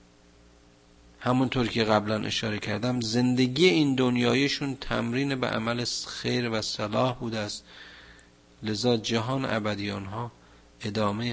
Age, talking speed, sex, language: 50-69, 105 wpm, male, Persian